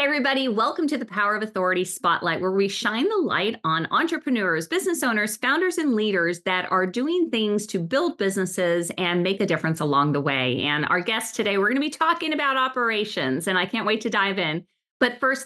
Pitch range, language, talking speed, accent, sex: 185-275 Hz, English, 210 wpm, American, female